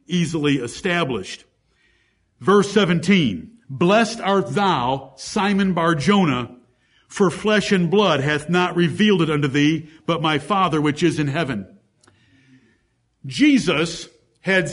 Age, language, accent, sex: 60-79, English, American, male